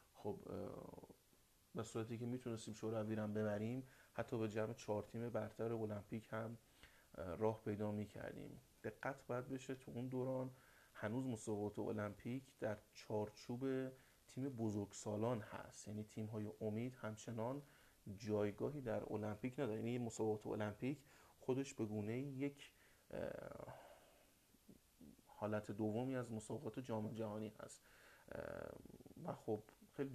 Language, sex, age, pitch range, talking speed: Persian, male, 30-49, 105-125 Hz, 115 wpm